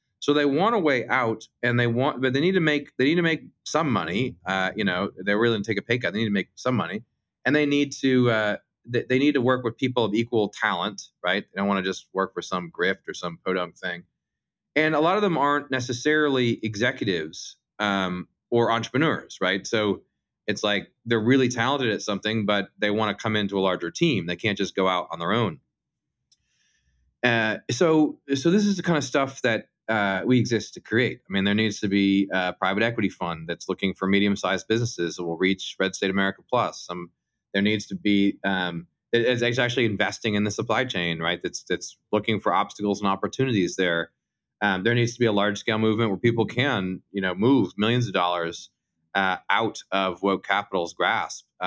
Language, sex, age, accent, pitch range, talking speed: English, male, 30-49, American, 95-125 Hz, 220 wpm